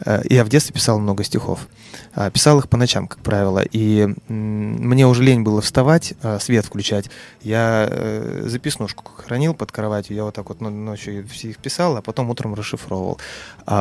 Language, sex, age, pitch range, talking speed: Russian, male, 20-39, 105-130 Hz, 165 wpm